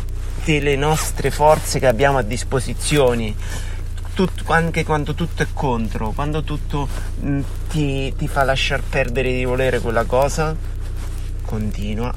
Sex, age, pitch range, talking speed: male, 30-49, 90-125 Hz, 120 wpm